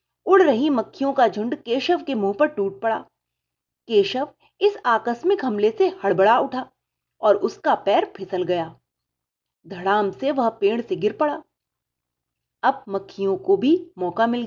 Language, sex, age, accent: Hindi, female, 30-49, native